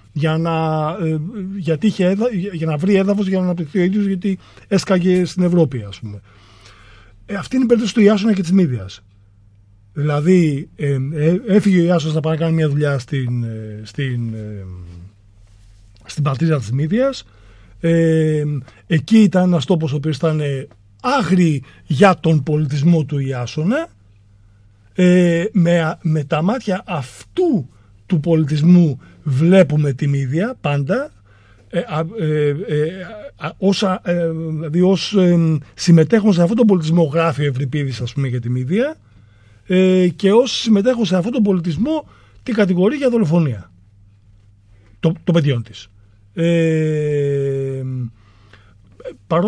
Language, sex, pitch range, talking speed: Greek, male, 120-185 Hz, 135 wpm